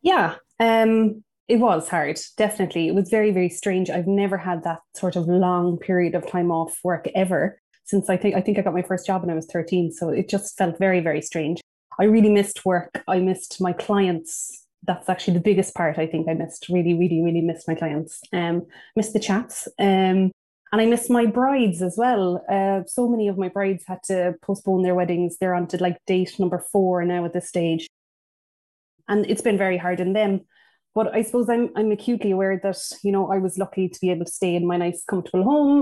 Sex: female